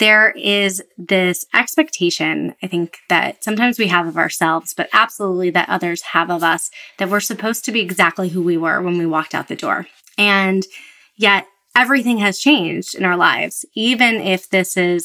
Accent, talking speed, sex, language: American, 185 wpm, female, English